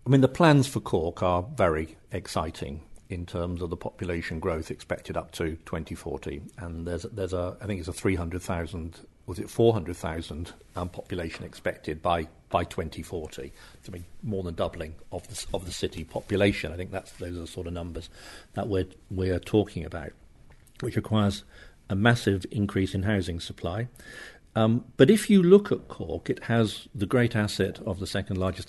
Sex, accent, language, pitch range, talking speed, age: male, British, English, 90-105 Hz, 185 wpm, 50-69